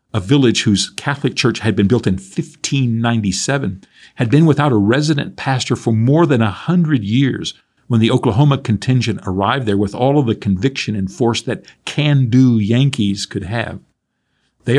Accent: American